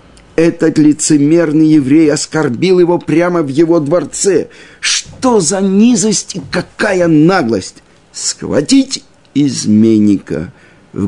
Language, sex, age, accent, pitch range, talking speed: Russian, male, 50-69, native, 115-165 Hz, 95 wpm